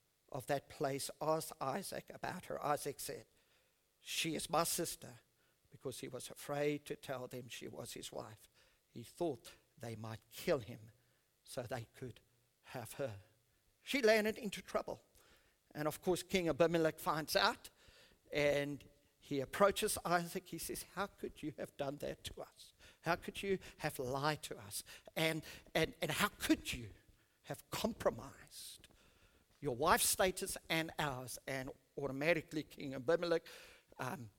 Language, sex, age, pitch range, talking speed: English, male, 50-69, 120-170 Hz, 150 wpm